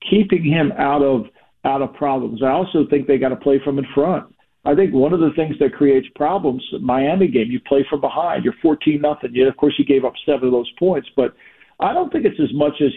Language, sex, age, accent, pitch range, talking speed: English, male, 50-69, American, 140-165 Hz, 240 wpm